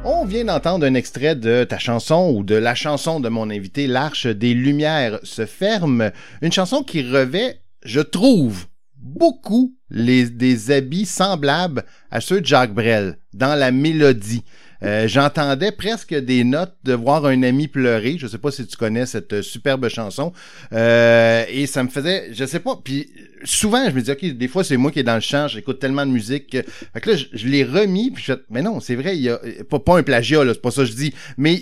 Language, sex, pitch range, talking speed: French, male, 120-160 Hz, 215 wpm